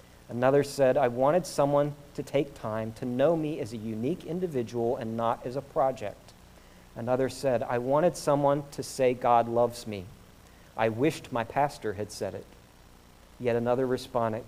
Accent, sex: American, male